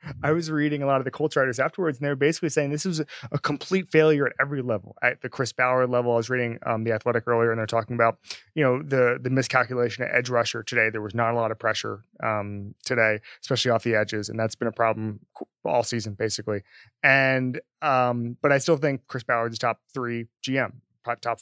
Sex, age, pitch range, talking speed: male, 20-39, 115-140 Hz, 235 wpm